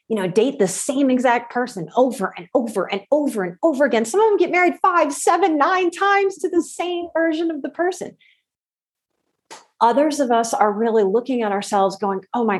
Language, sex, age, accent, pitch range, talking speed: English, female, 30-49, American, 195-275 Hz, 200 wpm